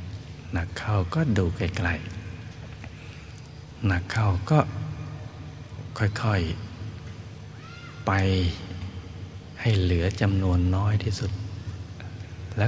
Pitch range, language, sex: 95-110 Hz, Thai, male